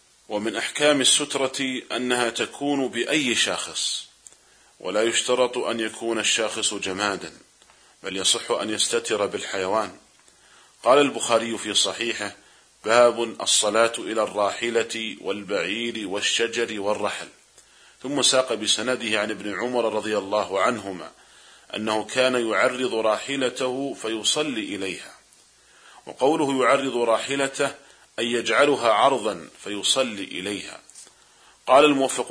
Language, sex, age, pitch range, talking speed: Arabic, male, 40-59, 105-125 Hz, 100 wpm